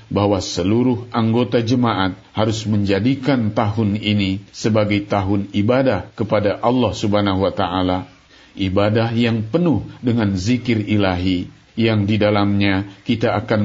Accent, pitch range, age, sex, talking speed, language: native, 95-110 Hz, 50-69, male, 120 wpm, Indonesian